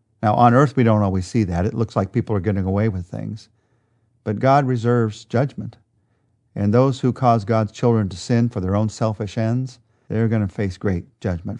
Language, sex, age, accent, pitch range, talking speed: English, male, 40-59, American, 105-130 Hz, 205 wpm